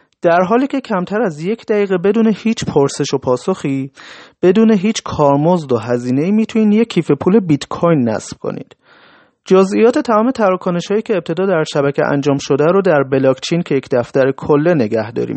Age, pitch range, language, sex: 30-49, 145-210 Hz, Persian, male